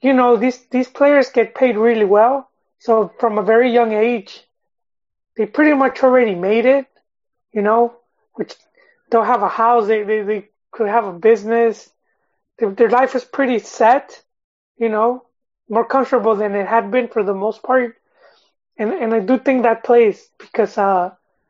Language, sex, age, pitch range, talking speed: English, male, 30-49, 205-240 Hz, 175 wpm